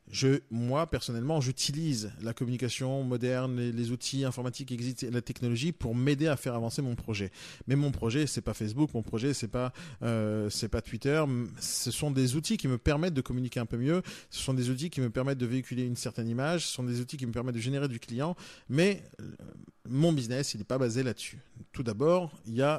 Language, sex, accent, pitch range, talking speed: French, male, French, 115-145 Hz, 220 wpm